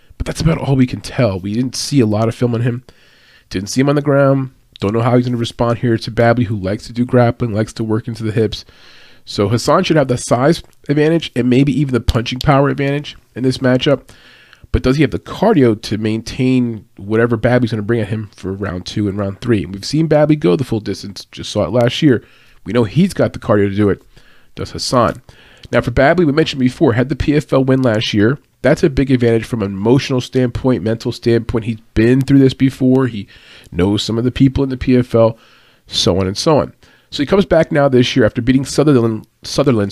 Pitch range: 110-135 Hz